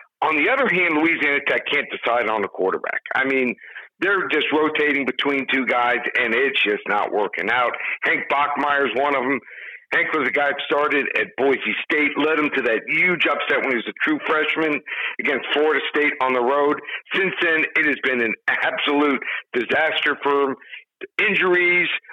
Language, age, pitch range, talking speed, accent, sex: English, 50-69, 135-170 Hz, 185 wpm, American, male